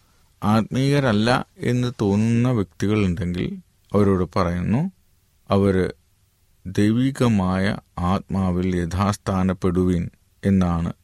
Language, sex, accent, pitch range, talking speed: Malayalam, male, native, 95-110 Hz, 65 wpm